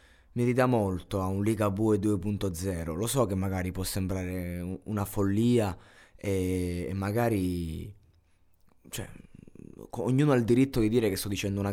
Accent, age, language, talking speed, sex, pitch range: native, 20-39, Italian, 150 wpm, male, 90-115 Hz